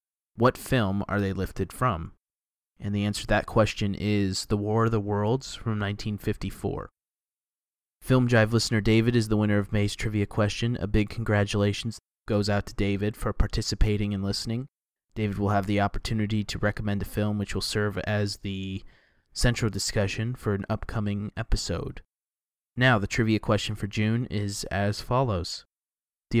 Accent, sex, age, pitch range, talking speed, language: American, male, 20-39, 100-115 Hz, 165 wpm, English